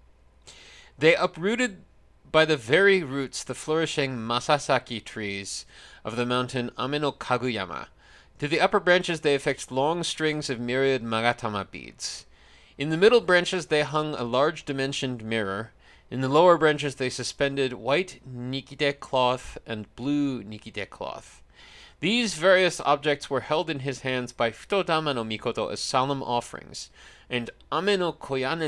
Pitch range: 115-165 Hz